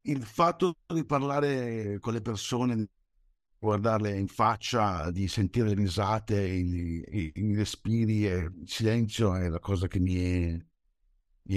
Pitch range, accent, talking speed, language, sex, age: 90-125 Hz, native, 120 wpm, Italian, male, 60-79